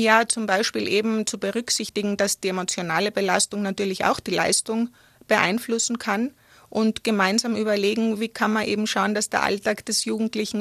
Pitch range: 200-225 Hz